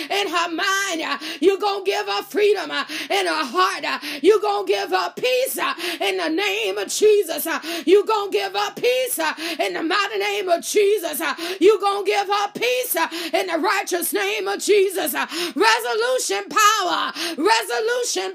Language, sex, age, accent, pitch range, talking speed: English, female, 30-49, American, 315-405 Hz, 150 wpm